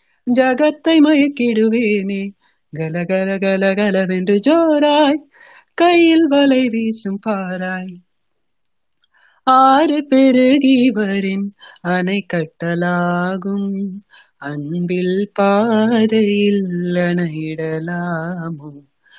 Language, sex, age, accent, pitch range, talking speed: Tamil, female, 30-49, native, 180-265 Hz, 45 wpm